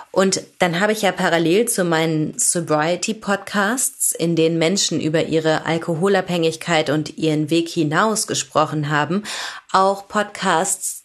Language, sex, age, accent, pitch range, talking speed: German, female, 30-49, German, 165-230 Hz, 125 wpm